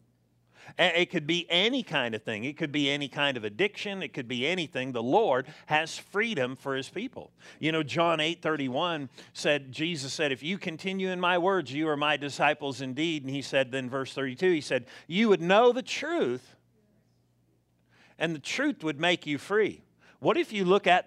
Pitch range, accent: 145-200 Hz, American